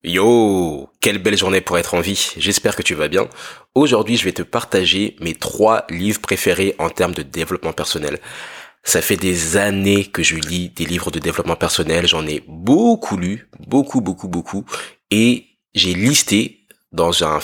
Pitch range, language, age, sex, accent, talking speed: 85-115 Hz, French, 20-39, male, French, 175 wpm